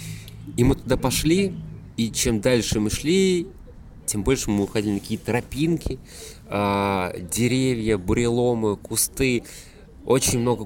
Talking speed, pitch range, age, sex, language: 120 wpm, 90-115 Hz, 20-39, male, Russian